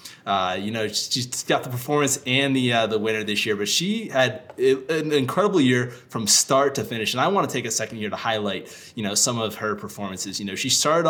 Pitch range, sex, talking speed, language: 100-130 Hz, male, 240 wpm, English